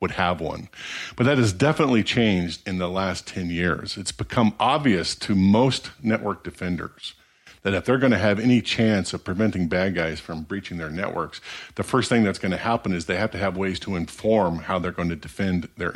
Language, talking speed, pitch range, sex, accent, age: English, 215 wpm, 90-110 Hz, male, American, 50-69